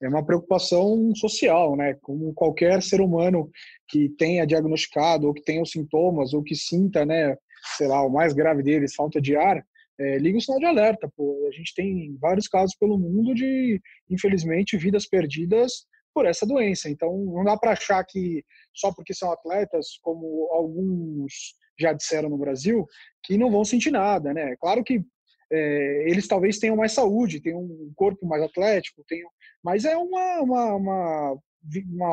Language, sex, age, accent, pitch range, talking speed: Portuguese, male, 20-39, Brazilian, 160-200 Hz, 175 wpm